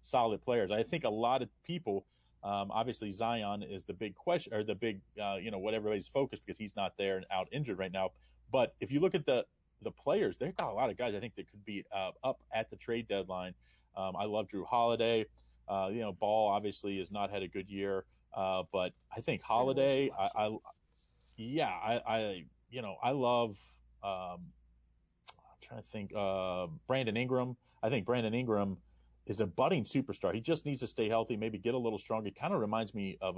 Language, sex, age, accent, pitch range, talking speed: English, male, 30-49, American, 95-115 Hz, 220 wpm